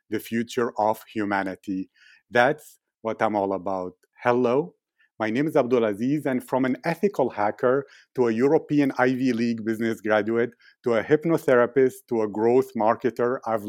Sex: male